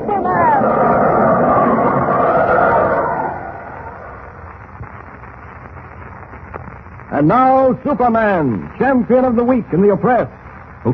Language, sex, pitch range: English, male, 180-230 Hz